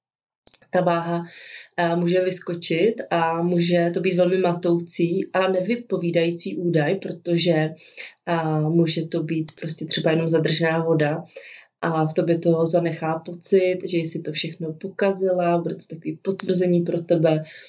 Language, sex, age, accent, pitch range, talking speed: Czech, female, 30-49, native, 160-180 Hz, 135 wpm